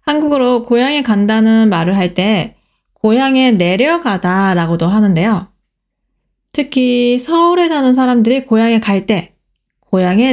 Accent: native